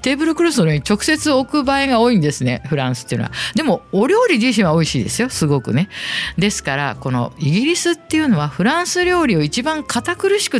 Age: 50-69